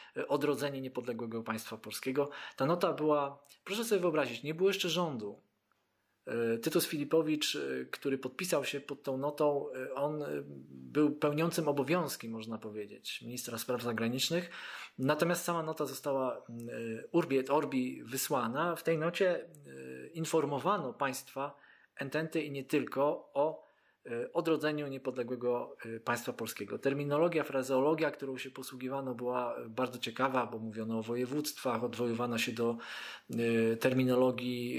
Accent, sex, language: native, male, Polish